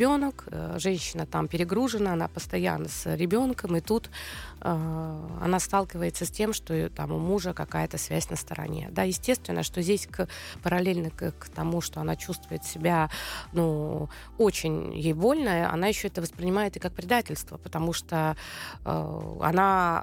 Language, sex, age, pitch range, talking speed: Russian, female, 20-39, 160-205 Hz, 140 wpm